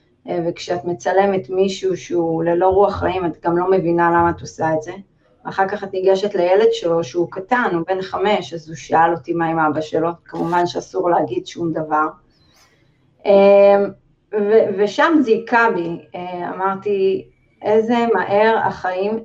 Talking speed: 145 wpm